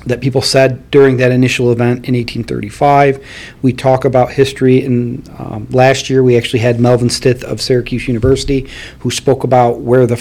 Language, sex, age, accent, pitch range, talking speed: English, male, 40-59, American, 120-135 Hz, 175 wpm